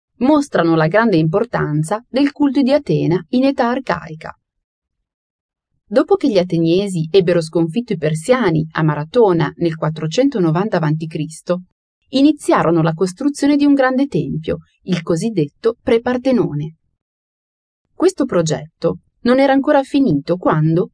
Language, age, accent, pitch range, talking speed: Italian, 30-49, native, 165-255 Hz, 120 wpm